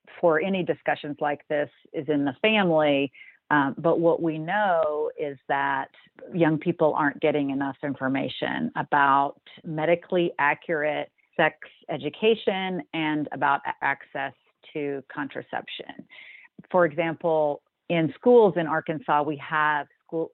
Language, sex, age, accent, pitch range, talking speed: English, female, 40-59, American, 145-165 Hz, 120 wpm